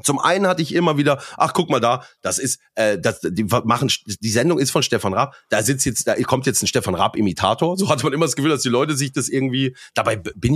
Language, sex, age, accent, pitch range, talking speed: German, male, 30-49, German, 110-155 Hz, 255 wpm